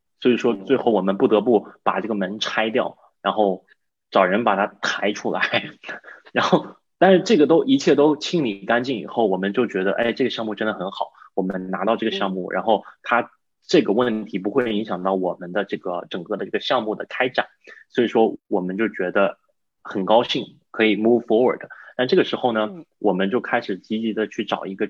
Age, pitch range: 20-39, 95-115 Hz